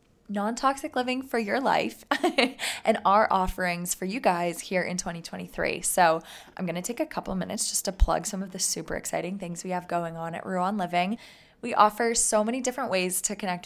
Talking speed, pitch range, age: 205 wpm, 170-205 Hz, 20-39